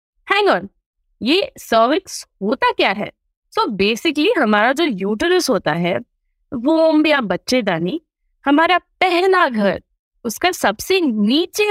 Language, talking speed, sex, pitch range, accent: English, 140 wpm, female, 200-335 Hz, Indian